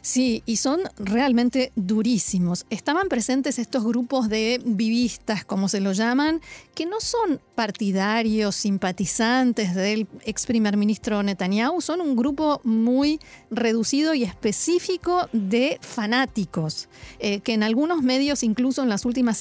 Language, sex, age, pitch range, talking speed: Spanish, female, 40-59, 205-265 Hz, 135 wpm